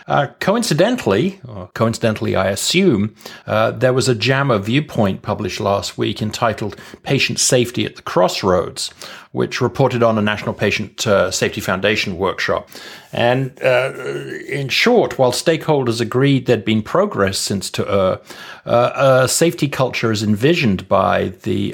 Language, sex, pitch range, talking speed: English, male, 105-130 Hz, 145 wpm